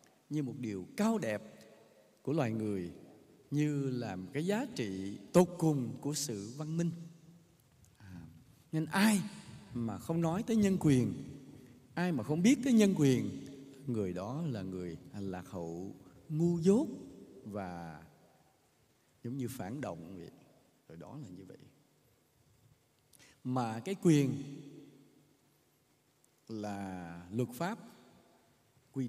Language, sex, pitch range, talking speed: English, male, 110-165 Hz, 125 wpm